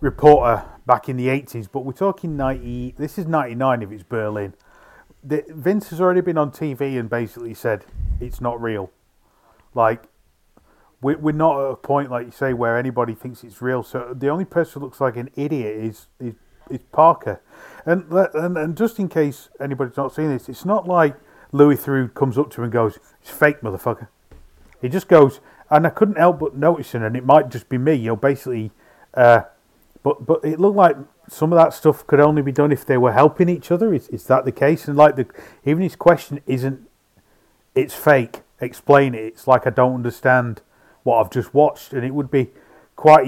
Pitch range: 115-145 Hz